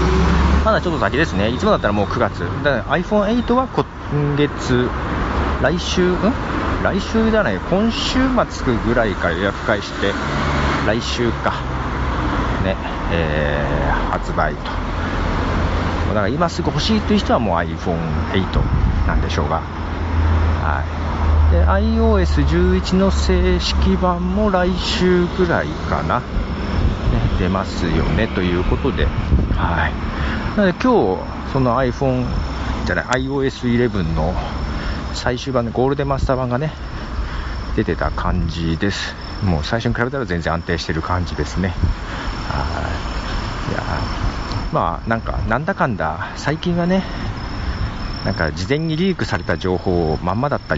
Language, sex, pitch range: Japanese, male, 80-115 Hz